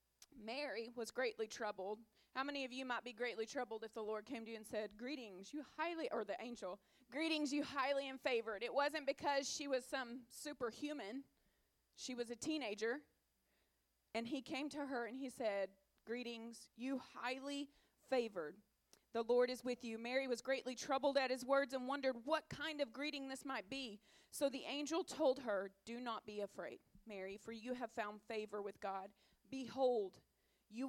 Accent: American